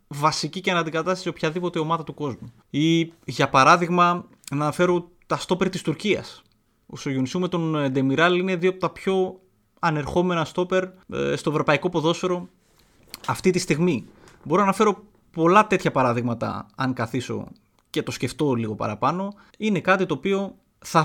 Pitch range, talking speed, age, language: 130-180 Hz, 150 wpm, 20-39, Greek